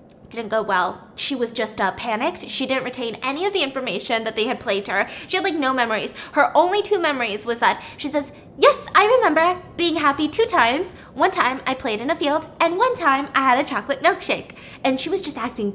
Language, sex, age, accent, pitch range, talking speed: English, female, 10-29, American, 230-325 Hz, 235 wpm